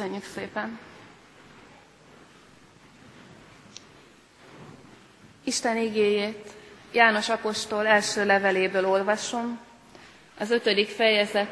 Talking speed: 65 wpm